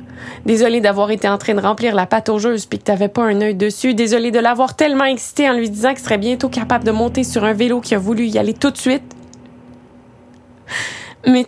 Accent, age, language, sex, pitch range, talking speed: Canadian, 20-39, French, female, 205-275 Hz, 225 wpm